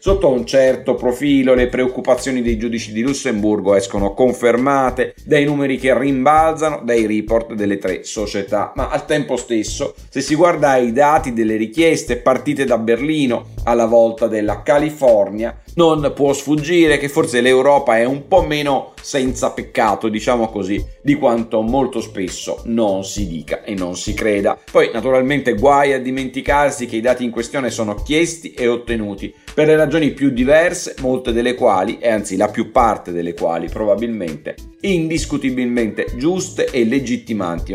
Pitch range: 115-145 Hz